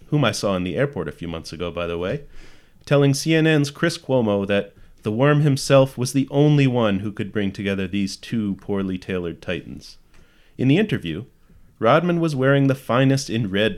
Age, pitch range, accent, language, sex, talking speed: 30-49, 100-135 Hz, American, English, male, 190 wpm